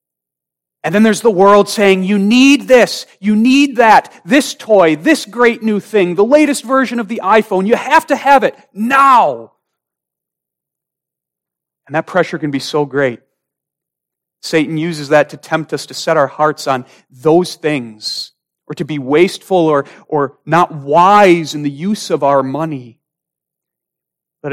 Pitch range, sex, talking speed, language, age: 145-215 Hz, male, 160 wpm, English, 40-59